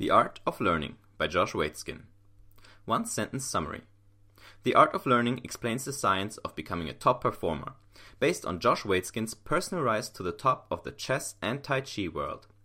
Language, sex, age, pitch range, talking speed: English, male, 30-49, 100-130 Hz, 180 wpm